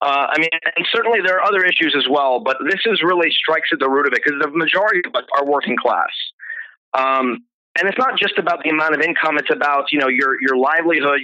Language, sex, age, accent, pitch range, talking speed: English, male, 30-49, American, 145-230 Hz, 240 wpm